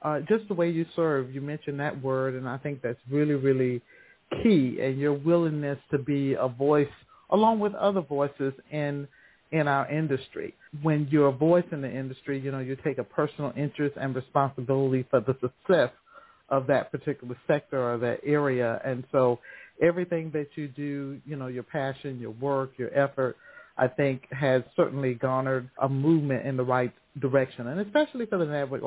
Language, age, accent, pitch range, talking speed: English, 50-69, American, 135-155 Hz, 185 wpm